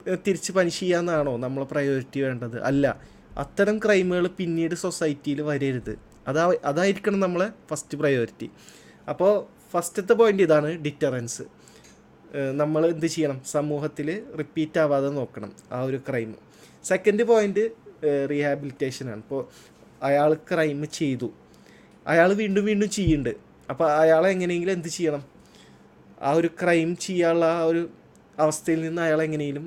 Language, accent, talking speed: Malayalam, native, 115 wpm